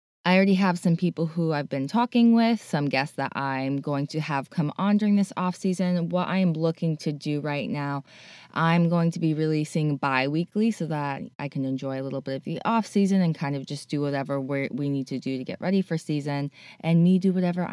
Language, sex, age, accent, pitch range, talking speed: English, female, 20-39, American, 140-175 Hz, 235 wpm